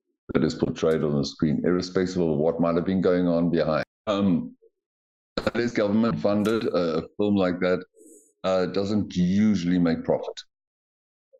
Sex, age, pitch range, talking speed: male, 60-79, 80-105 Hz, 145 wpm